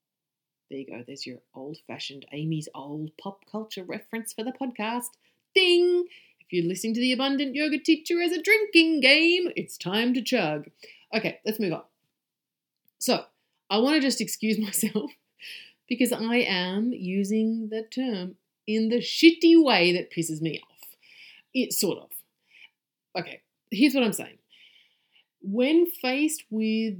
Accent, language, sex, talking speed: Australian, English, female, 150 wpm